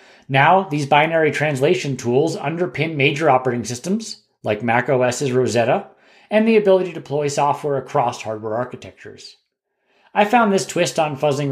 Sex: male